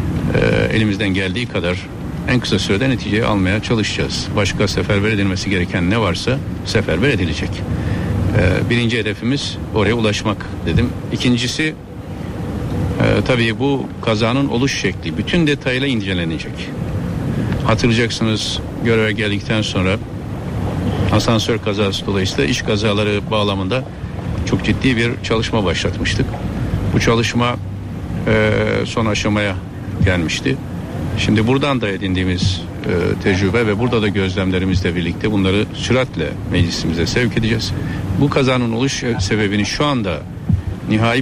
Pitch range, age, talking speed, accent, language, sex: 95-120 Hz, 60-79, 110 wpm, native, Turkish, male